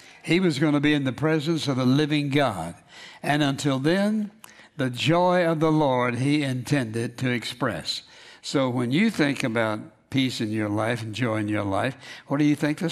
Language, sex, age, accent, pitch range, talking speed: English, male, 60-79, American, 115-150 Hz, 200 wpm